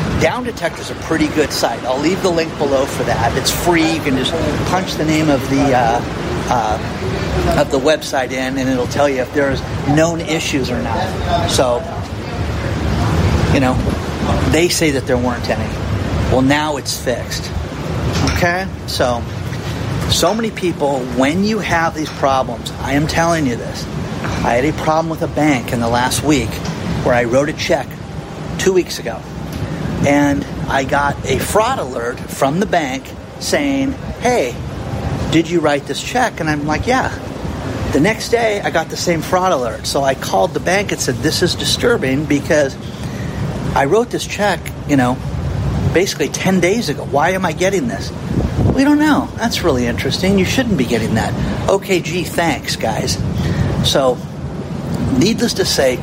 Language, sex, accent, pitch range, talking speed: English, male, American, 130-165 Hz, 170 wpm